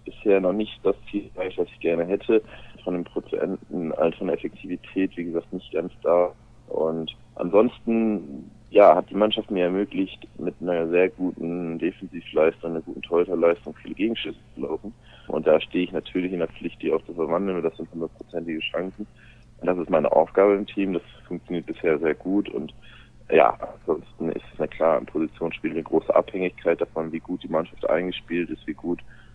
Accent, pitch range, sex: German, 85-100 Hz, male